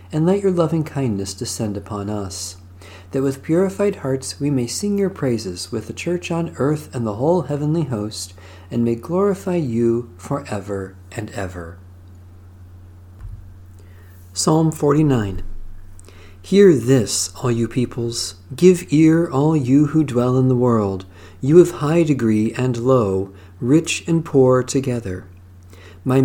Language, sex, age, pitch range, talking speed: English, male, 40-59, 95-145 Hz, 140 wpm